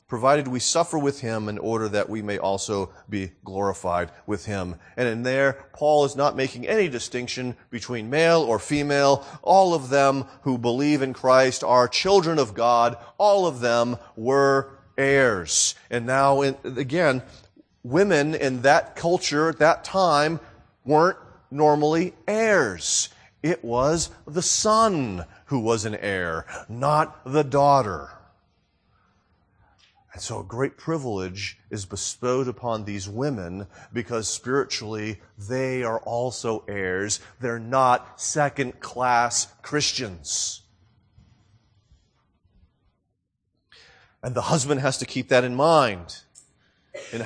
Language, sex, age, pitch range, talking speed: English, male, 40-59, 105-145 Hz, 125 wpm